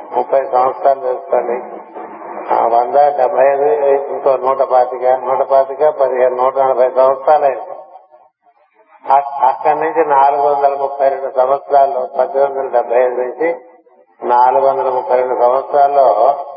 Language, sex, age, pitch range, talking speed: Telugu, male, 50-69, 130-145 Hz, 100 wpm